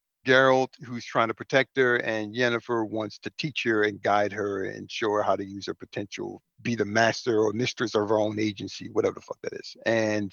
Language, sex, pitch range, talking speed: English, male, 115-150 Hz, 220 wpm